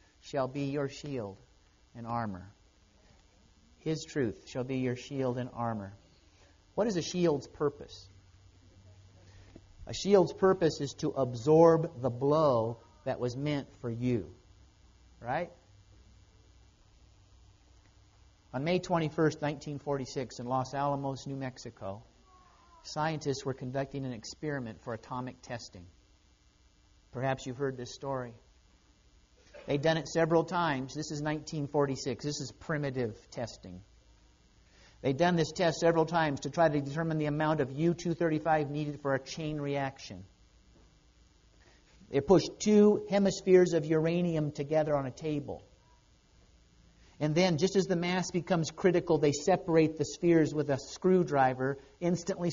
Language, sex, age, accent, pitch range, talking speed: English, male, 50-69, American, 115-155 Hz, 130 wpm